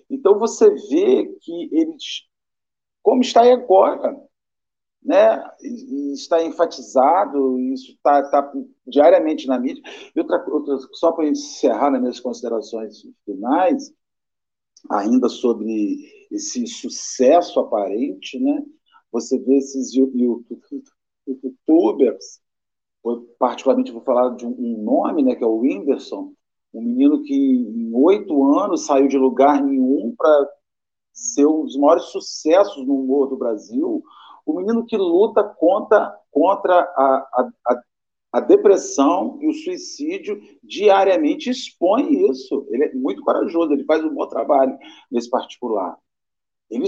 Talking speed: 125 wpm